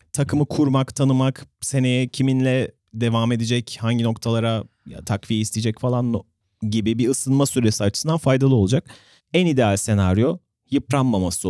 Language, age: Turkish, 30-49